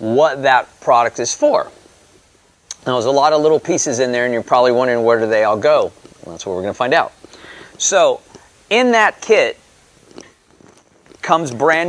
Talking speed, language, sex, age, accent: 180 wpm, English, male, 40-59, American